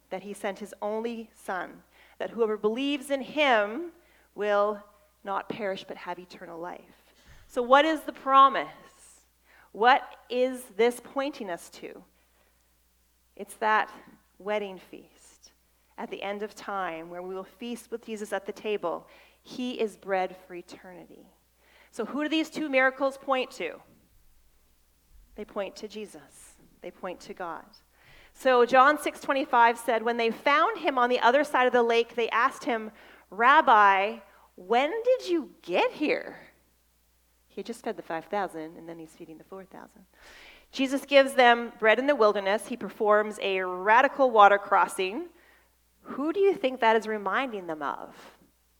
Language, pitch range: English, 190-265 Hz